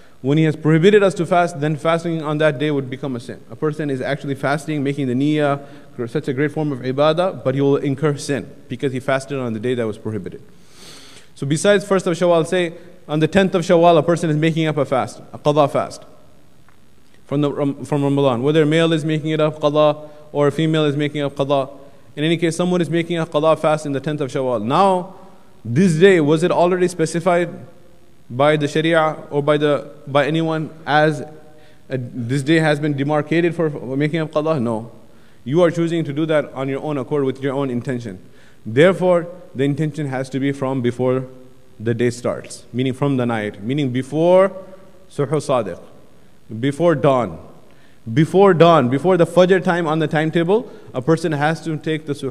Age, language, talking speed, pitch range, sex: 20-39, English, 200 wpm, 135-165 Hz, male